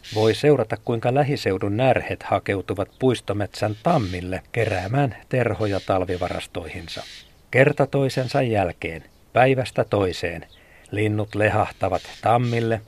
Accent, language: native, Finnish